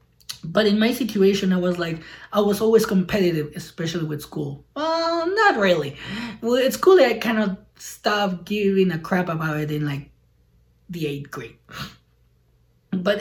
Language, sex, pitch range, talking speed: English, male, 175-230 Hz, 170 wpm